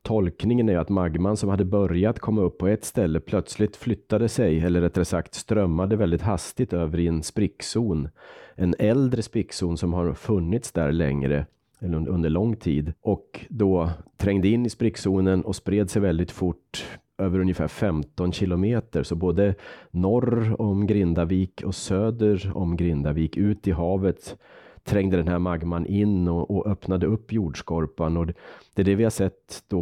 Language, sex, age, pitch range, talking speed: Swedish, male, 30-49, 85-105 Hz, 165 wpm